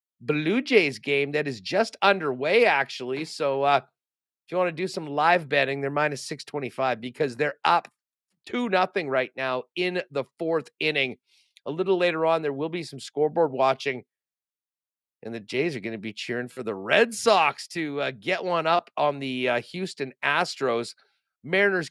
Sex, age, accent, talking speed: male, 40-59, American, 175 wpm